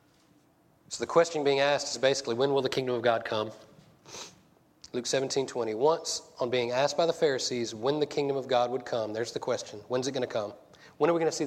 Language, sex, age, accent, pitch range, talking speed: English, male, 30-49, American, 120-155 Hz, 235 wpm